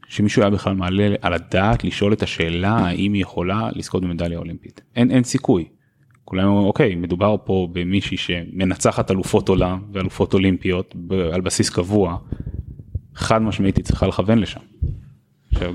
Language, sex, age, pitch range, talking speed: Hebrew, male, 20-39, 90-110 Hz, 145 wpm